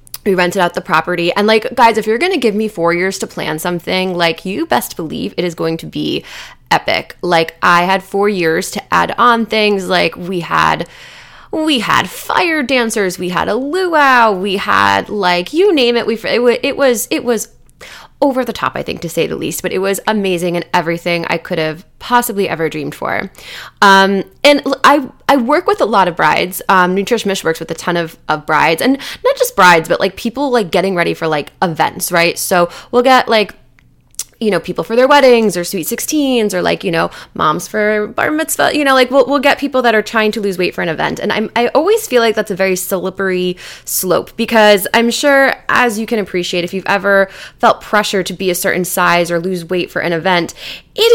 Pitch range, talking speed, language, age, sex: 180-245 Hz, 220 wpm, English, 20-39, female